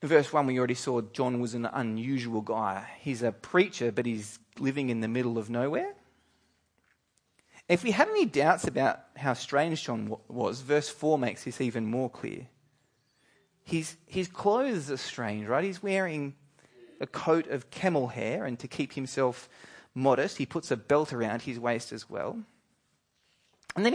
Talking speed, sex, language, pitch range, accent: 170 wpm, male, English, 125-195 Hz, Australian